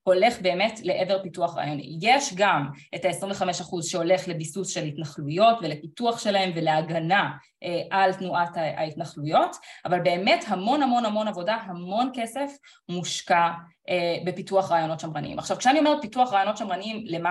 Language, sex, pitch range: Hebrew, female, 170-225 Hz